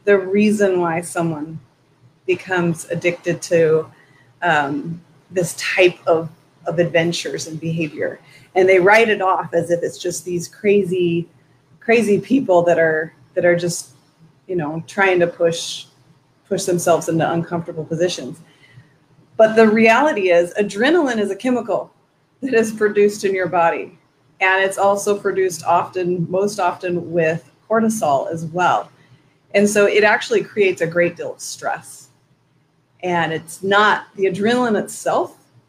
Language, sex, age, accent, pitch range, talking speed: English, female, 30-49, American, 155-195 Hz, 140 wpm